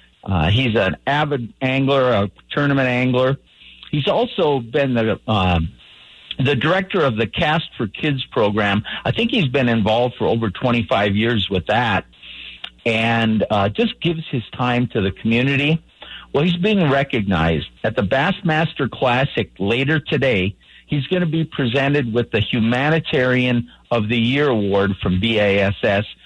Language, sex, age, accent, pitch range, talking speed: English, male, 50-69, American, 110-145 Hz, 150 wpm